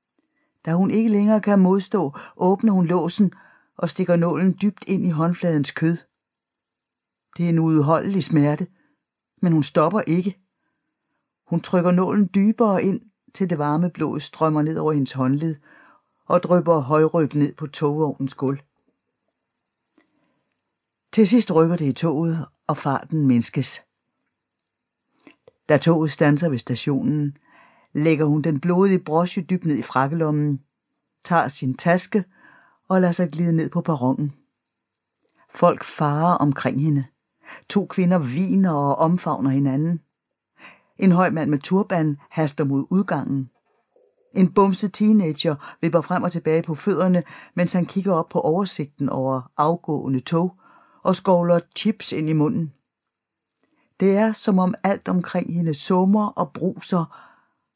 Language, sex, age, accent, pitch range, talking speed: Danish, female, 60-79, native, 150-190 Hz, 135 wpm